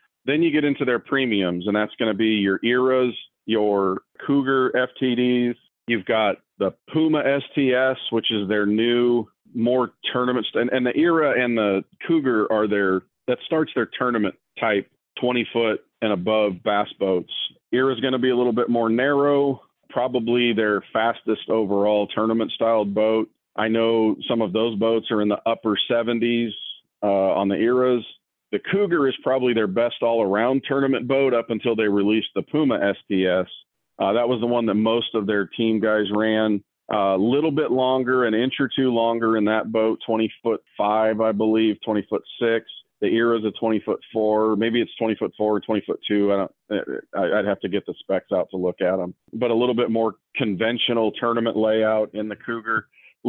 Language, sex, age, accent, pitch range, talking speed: English, male, 40-59, American, 105-125 Hz, 185 wpm